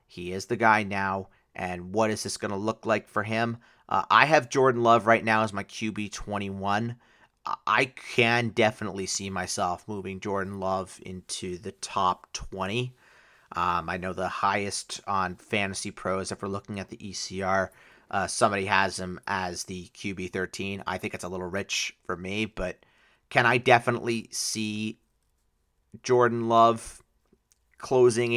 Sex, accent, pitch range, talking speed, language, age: male, American, 95-130 Hz, 160 wpm, English, 30-49